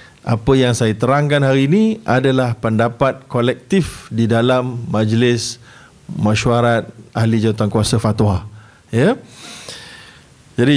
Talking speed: 105 wpm